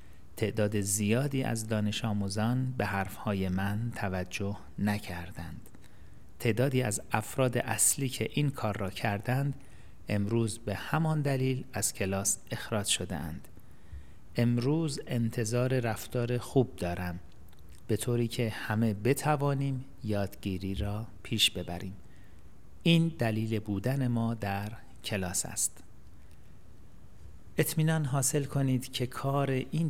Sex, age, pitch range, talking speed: male, 40-59, 100-125 Hz, 110 wpm